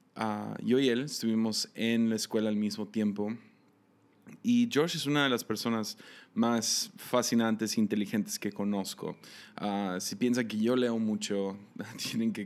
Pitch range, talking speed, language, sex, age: 105-120 Hz, 160 wpm, Spanish, male, 20-39